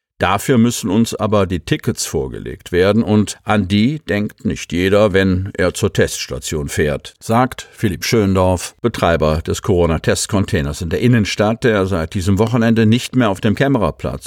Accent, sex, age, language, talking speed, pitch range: German, male, 50-69, German, 155 wpm, 90-120 Hz